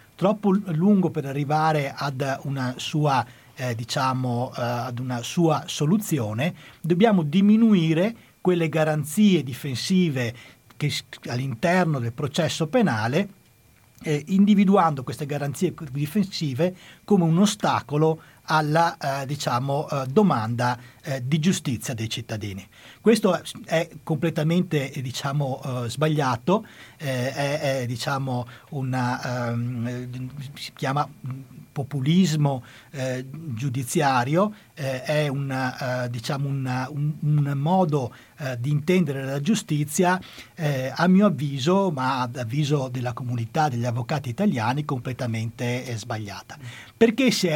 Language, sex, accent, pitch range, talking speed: Italian, male, native, 125-165 Hz, 85 wpm